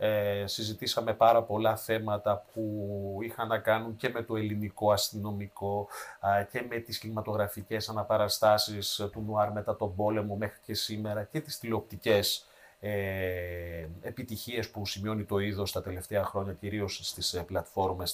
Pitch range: 100-120 Hz